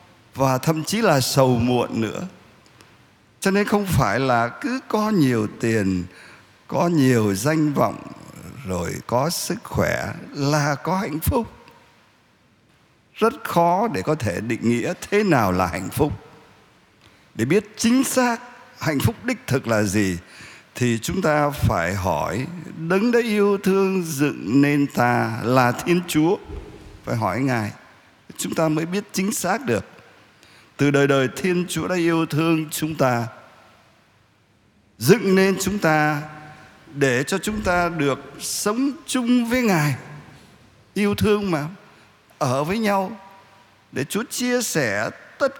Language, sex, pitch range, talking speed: Vietnamese, male, 120-195 Hz, 145 wpm